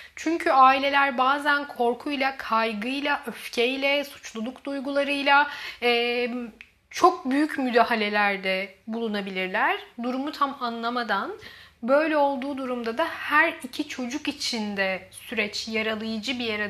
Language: Turkish